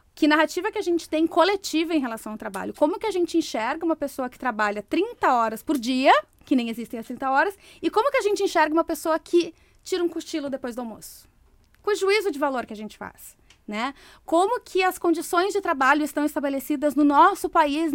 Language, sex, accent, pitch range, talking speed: Portuguese, female, Brazilian, 250-345 Hz, 220 wpm